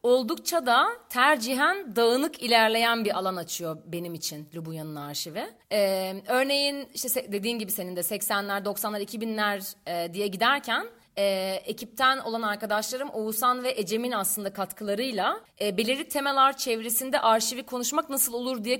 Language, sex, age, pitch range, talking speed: Turkish, female, 30-49, 200-250 Hz, 140 wpm